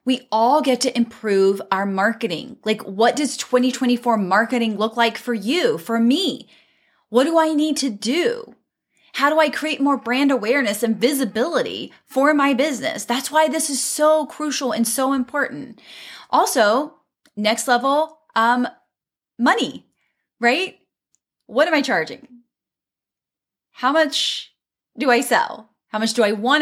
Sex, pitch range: female, 235-305 Hz